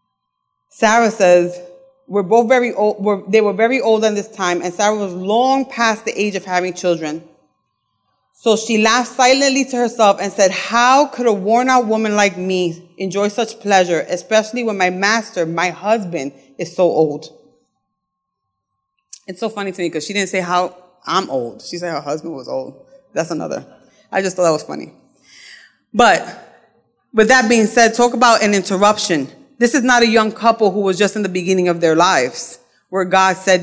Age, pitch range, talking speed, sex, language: 30-49, 175-220 Hz, 185 wpm, female, English